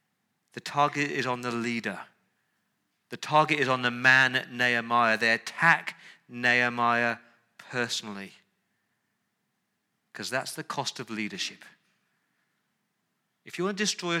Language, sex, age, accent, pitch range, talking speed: English, male, 40-59, British, 115-160 Hz, 120 wpm